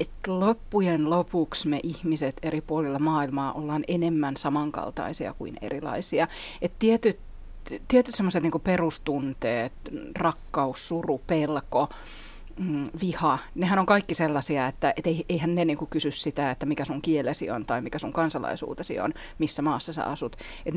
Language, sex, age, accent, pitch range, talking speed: Finnish, female, 30-49, native, 150-180 Hz, 140 wpm